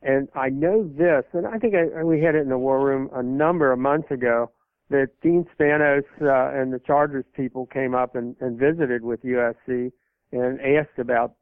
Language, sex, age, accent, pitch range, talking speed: English, male, 60-79, American, 120-140 Hz, 200 wpm